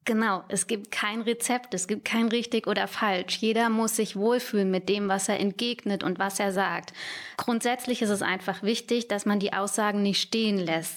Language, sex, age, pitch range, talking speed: German, female, 20-39, 190-230 Hz, 195 wpm